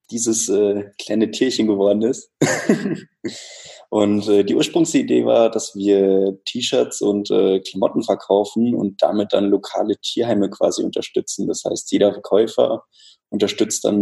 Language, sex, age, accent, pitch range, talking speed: German, male, 20-39, German, 95-105 Hz, 135 wpm